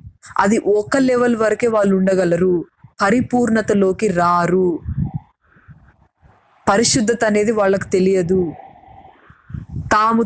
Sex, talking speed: female, 75 wpm